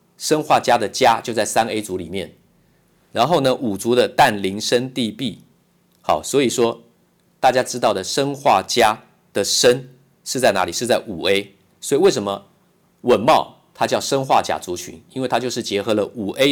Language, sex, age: Chinese, male, 50-69